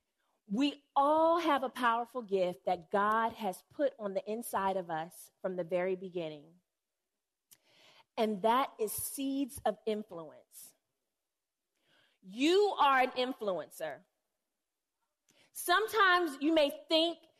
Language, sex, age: English, female, 30-49